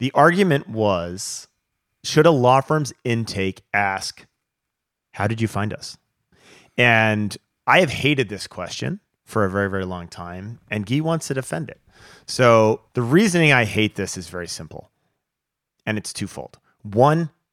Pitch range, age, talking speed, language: 105-135 Hz, 30-49, 155 wpm, English